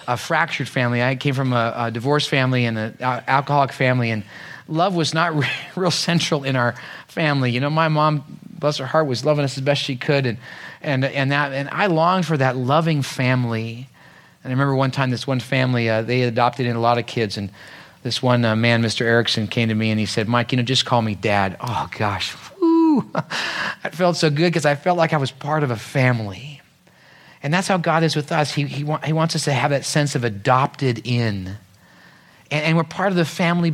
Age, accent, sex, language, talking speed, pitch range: 40-59, American, male, English, 230 wpm, 125-160 Hz